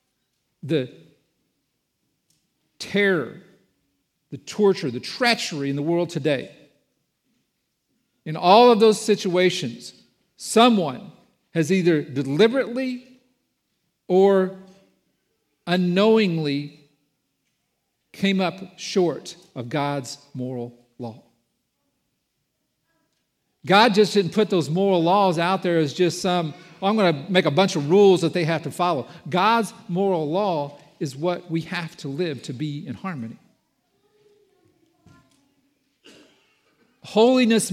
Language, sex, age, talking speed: English, male, 50-69, 105 wpm